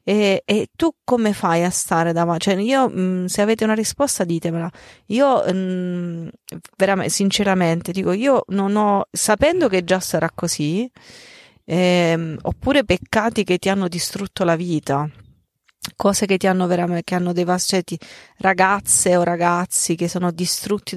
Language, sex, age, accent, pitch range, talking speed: Italian, female, 30-49, native, 175-200 Hz, 145 wpm